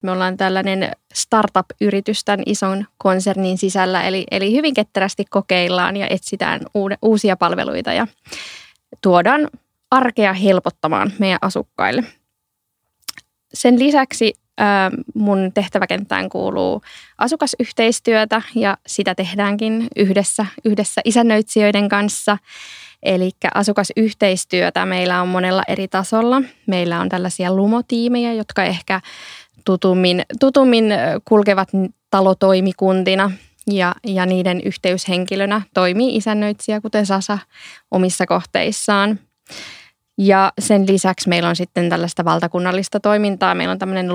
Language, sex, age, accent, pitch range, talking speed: Finnish, female, 20-39, native, 185-215 Hz, 100 wpm